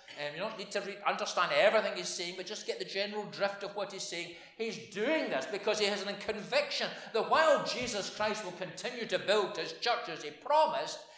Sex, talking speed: male, 220 wpm